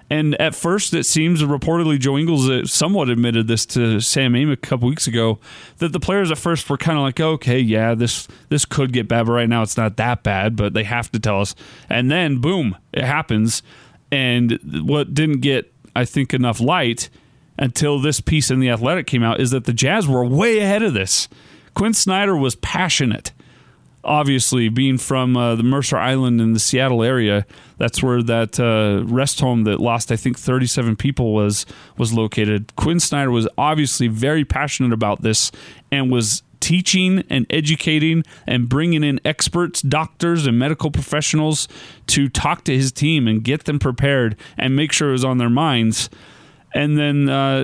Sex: male